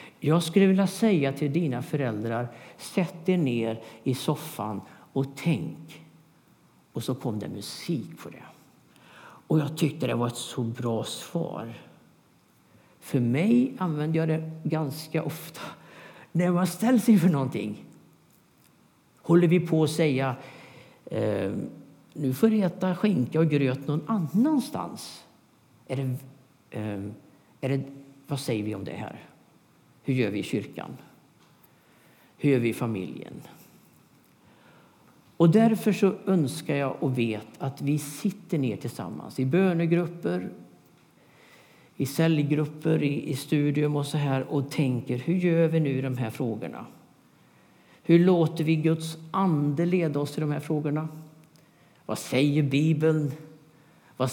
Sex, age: male, 50-69